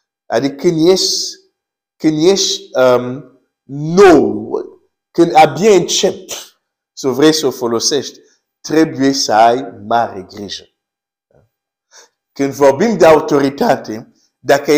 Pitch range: 130-175 Hz